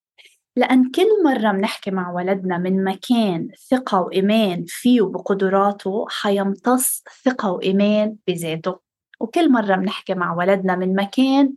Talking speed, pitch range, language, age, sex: 120 wpm, 185-225 Hz, English, 20-39, female